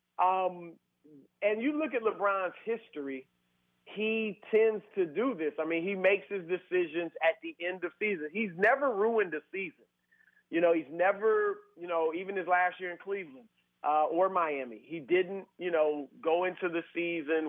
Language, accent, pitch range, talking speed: English, American, 165-225 Hz, 175 wpm